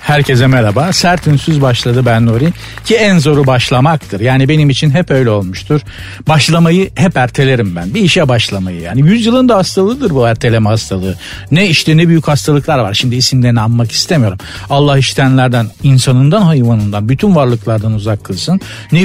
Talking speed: 155 wpm